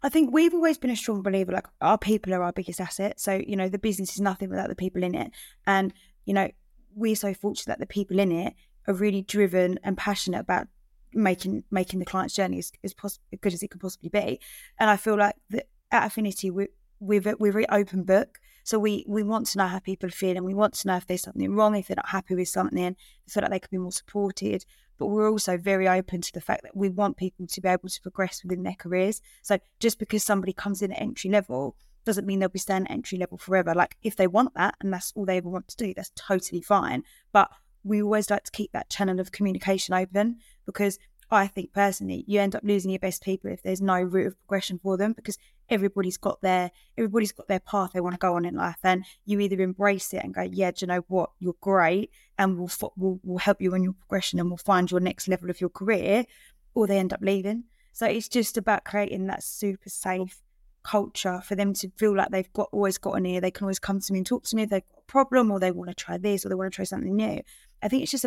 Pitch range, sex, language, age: 185-210 Hz, female, English, 20-39